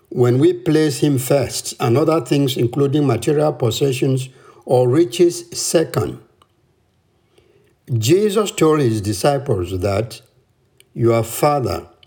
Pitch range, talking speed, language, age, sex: 115-160 Hz, 105 wpm, English, 60-79, male